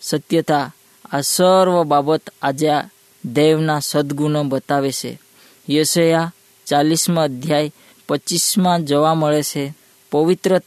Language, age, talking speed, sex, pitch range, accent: Hindi, 20-39, 100 wpm, female, 145-170 Hz, native